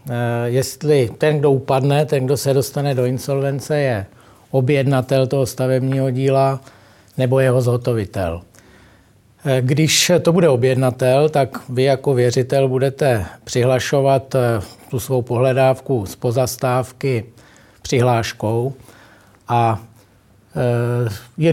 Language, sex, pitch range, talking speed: Czech, male, 120-145 Hz, 100 wpm